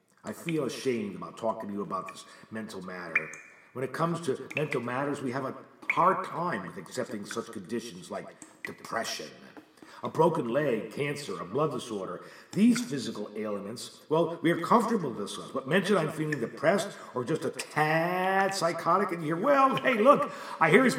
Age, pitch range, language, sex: 50-69, 125-195 Hz, English, male